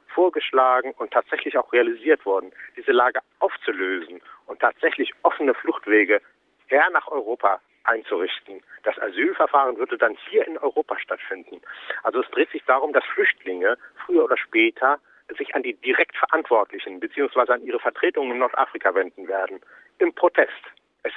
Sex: male